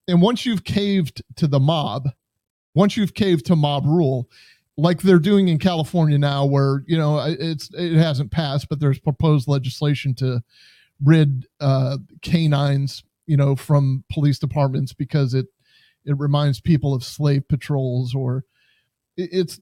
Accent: American